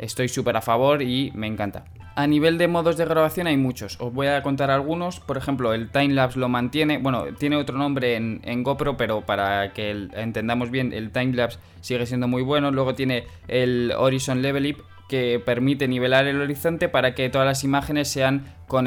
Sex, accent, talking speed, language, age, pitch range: male, Spanish, 195 wpm, Spanish, 20-39, 120-140 Hz